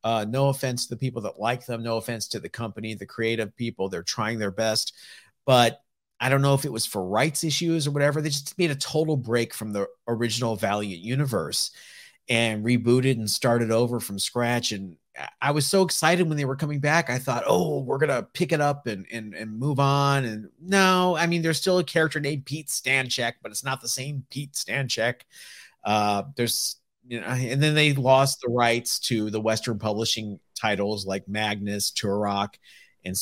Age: 40-59